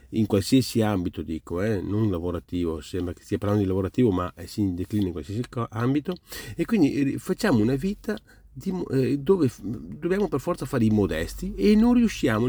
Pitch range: 100-135 Hz